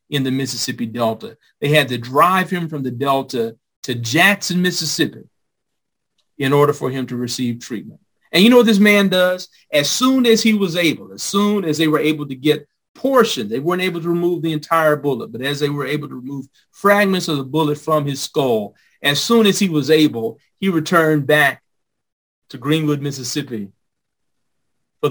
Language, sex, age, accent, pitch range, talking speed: English, male, 40-59, American, 120-170 Hz, 190 wpm